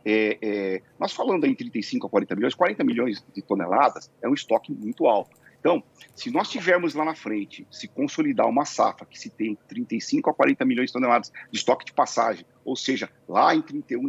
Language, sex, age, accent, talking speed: Portuguese, male, 40-59, Brazilian, 190 wpm